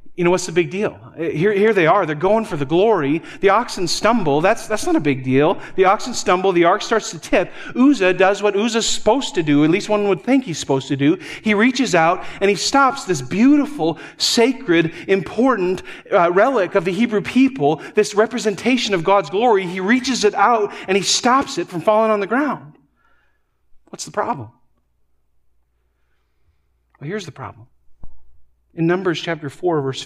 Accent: American